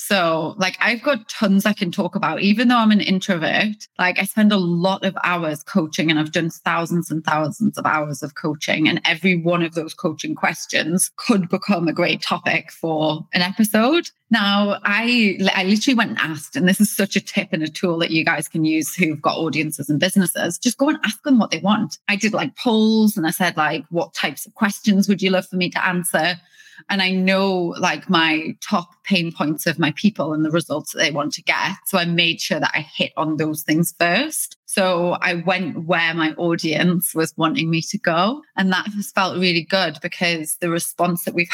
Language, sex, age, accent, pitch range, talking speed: English, female, 30-49, British, 160-200 Hz, 220 wpm